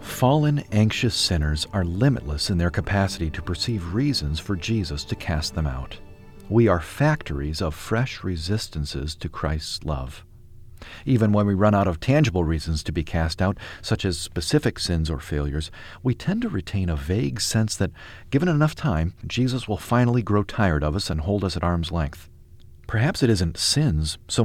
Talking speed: 180 wpm